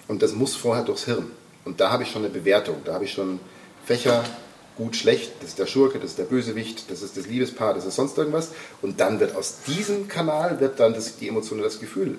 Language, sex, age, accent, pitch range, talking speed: German, male, 40-59, German, 105-150 Hz, 245 wpm